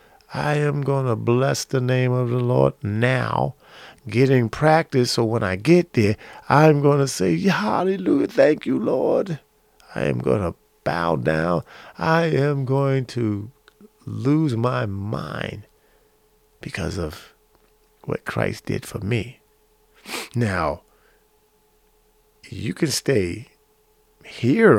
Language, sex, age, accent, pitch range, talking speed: English, male, 40-59, American, 105-135 Hz, 125 wpm